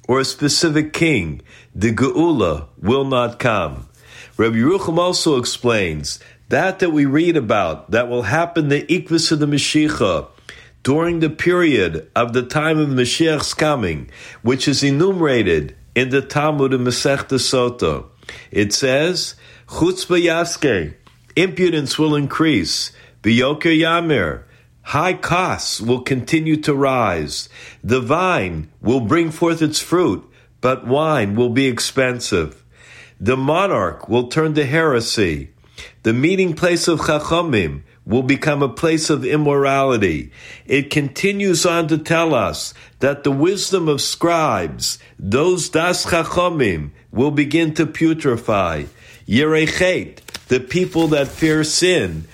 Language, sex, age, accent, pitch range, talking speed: English, male, 50-69, American, 125-165 Hz, 125 wpm